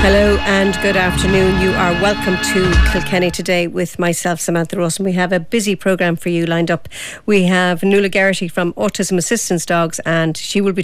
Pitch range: 170-195 Hz